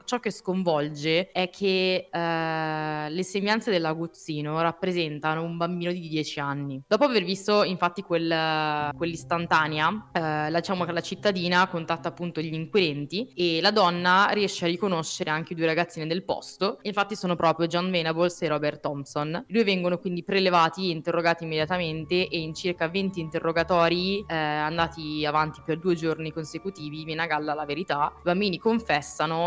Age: 20-39